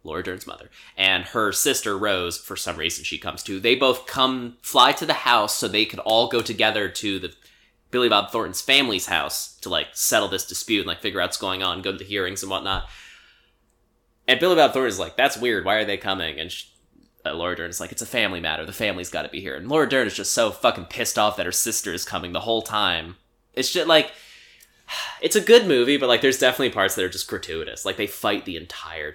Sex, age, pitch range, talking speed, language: male, 20-39, 95-130 Hz, 240 wpm, English